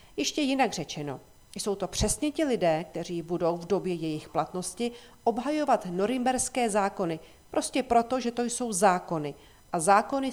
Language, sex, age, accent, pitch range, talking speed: Czech, female, 40-59, native, 170-225 Hz, 145 wpm